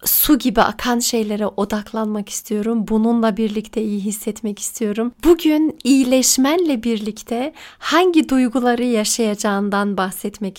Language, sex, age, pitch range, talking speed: Turkish, female, 40-59, 220-275 Hz, 100 wpm